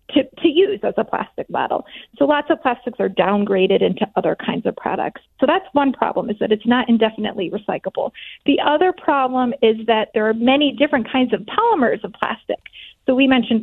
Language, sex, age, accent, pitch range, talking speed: English, female, 30-49, American, 220-285 Hz, 200 wpm